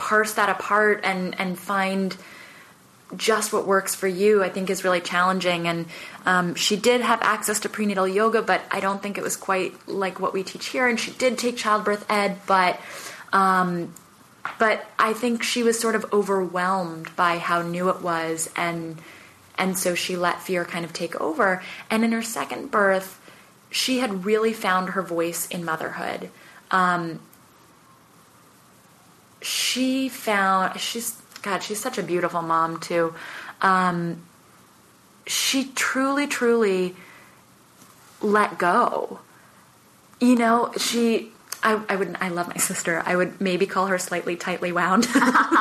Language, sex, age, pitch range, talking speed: English, female, 20-39, 180-225 Hz, 155 wpm